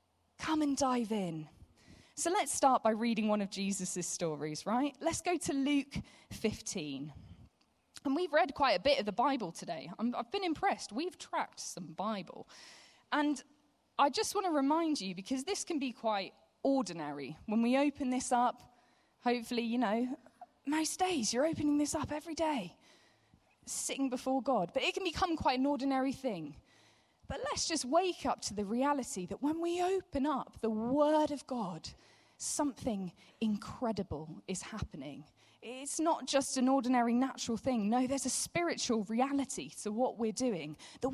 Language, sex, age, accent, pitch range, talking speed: English, female, 20-39, British, 225-300 Hz, 165 wpm